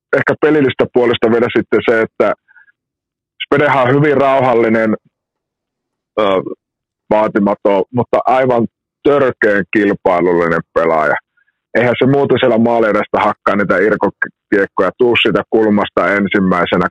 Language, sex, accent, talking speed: Finnish, male, native, 105 wpm